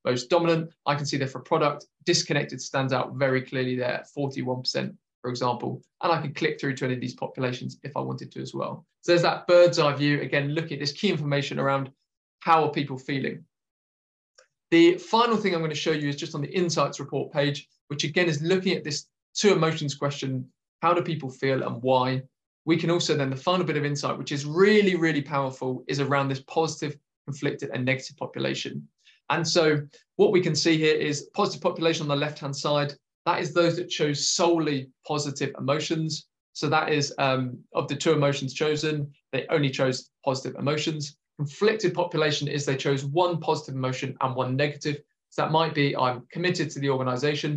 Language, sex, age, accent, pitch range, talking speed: English, male, 20-39, British, 135-160 Hz, 200 wpm